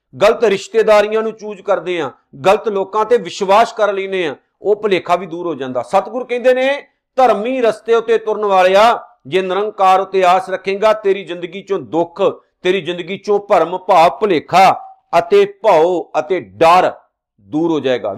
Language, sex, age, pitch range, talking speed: Punjabi, male, 50-69, 155-215 Hz, 160 wpm